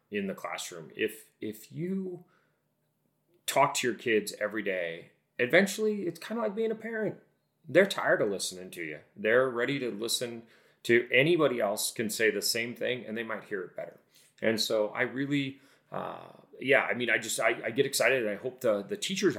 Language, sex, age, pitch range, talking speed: English, male, 30-49, 105-165 Hz, 200 wpm